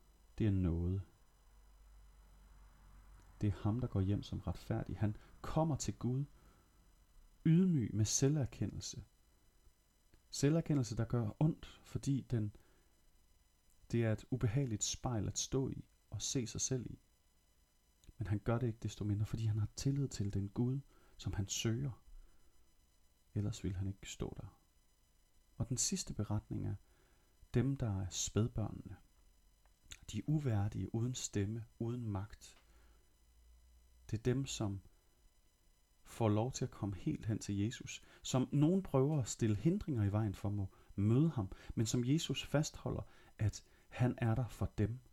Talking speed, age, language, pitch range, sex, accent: 145 wpm, 30-49, Danish, 90-125 Hz, male, native